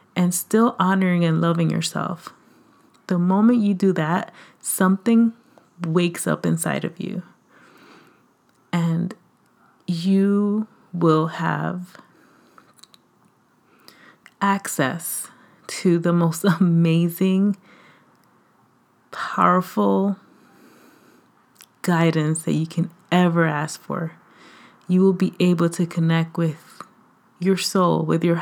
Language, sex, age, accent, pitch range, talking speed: English, female, 30-49, American, 170-205 Hz, 95 wpm